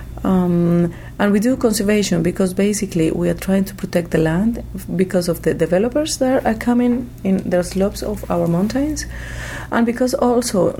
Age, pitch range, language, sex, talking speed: 30-49, 165-200 Hz, English, female, 165 wpm